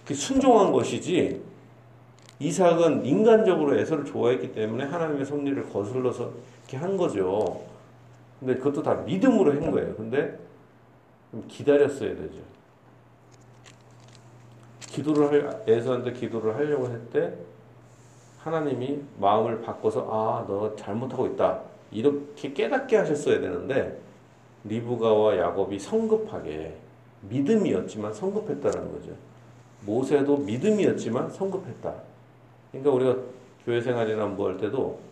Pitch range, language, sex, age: 120-155 Hz, Korean, male, 40-59